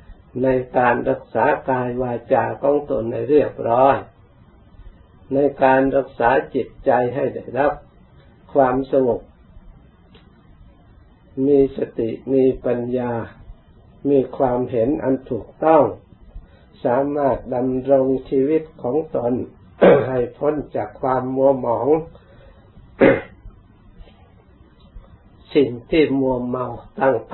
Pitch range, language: 110-135 Hz, Thai